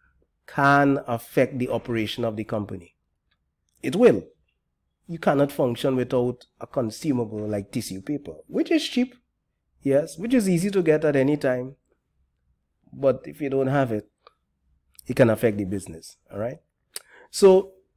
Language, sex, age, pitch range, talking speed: English, male, 30-49, 100-140 Hz, 145 wpm